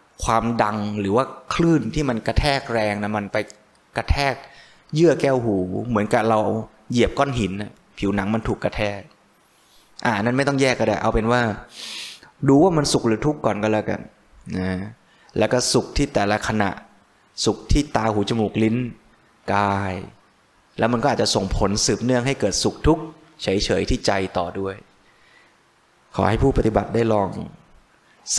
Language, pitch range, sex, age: Thai, 95-115 Hz, male, 20-39